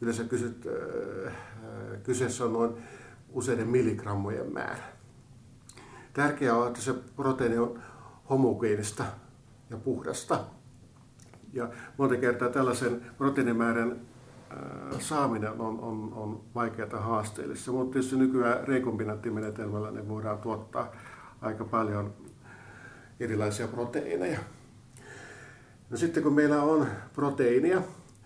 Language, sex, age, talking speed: Finnish, male, 50-69, 95 wpm